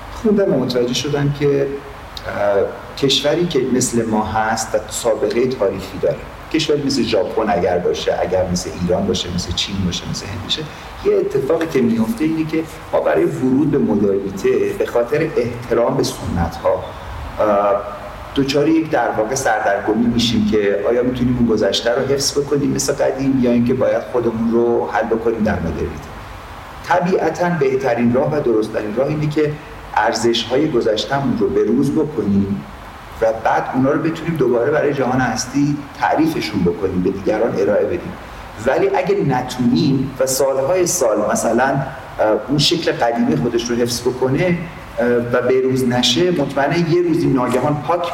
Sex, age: male, 40-59